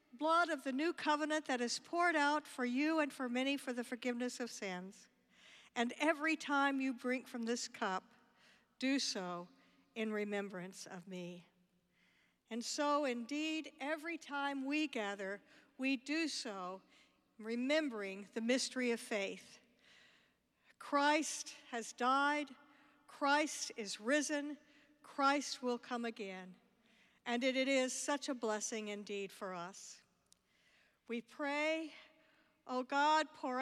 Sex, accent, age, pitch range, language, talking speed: female, American, 60-79, 225-285 Hz, English, 130 wpm